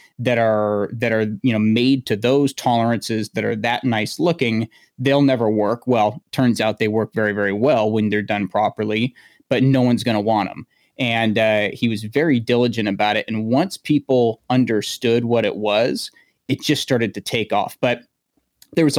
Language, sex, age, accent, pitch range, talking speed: English, male, 30-49, American, 110-125 Hz, 195 wpm